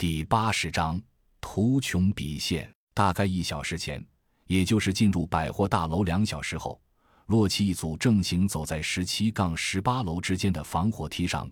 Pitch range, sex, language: 80-105 Hz, male, Chinese